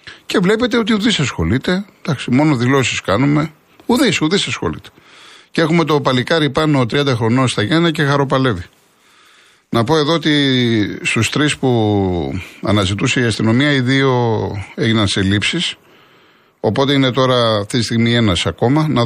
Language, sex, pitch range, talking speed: Greek, male, 110-150 Hz, 150 wpm